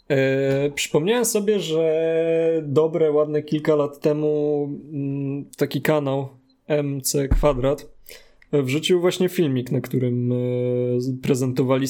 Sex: male